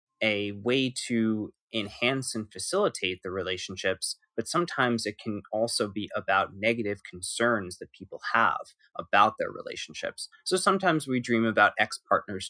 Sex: male